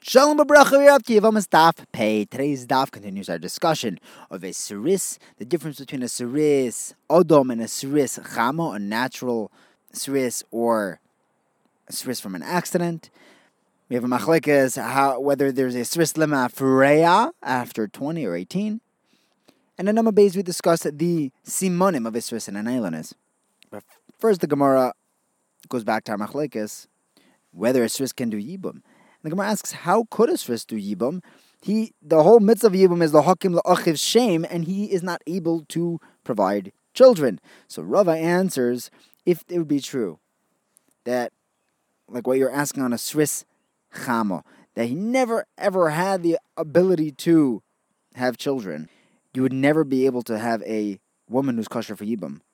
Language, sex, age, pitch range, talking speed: English, male, 30-49, 120-180 Hz, 155 wpm